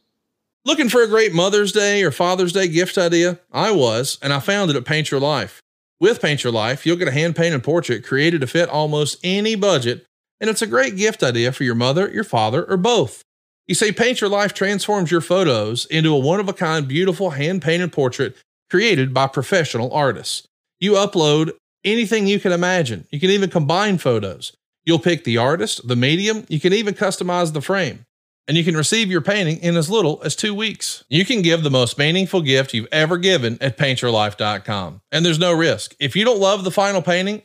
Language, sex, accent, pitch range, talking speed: English, male, American, 145-195 Hz, 200 wpm